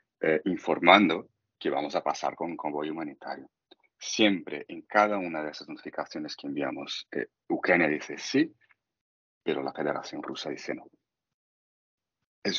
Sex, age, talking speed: male, 40-59, 145 wpm